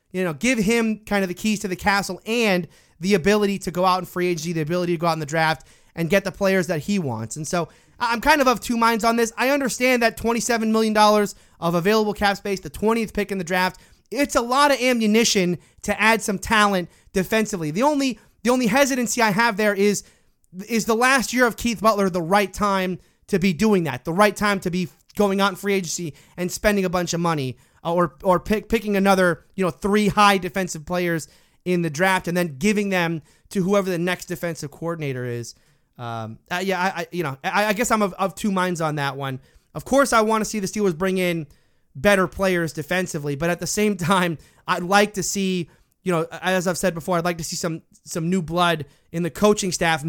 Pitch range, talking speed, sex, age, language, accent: 170-210 Hz, 230 wpm, male, 30-49, English, American